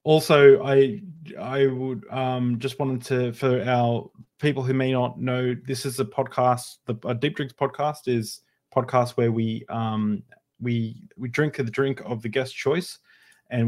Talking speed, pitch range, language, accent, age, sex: 175 wpm, 110-130 Hz, English, Australian, 20-39, male